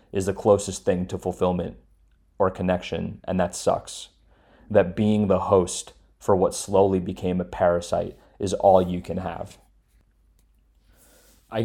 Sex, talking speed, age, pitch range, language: male, 140 wpm, 20-39, 90-100 Hz, English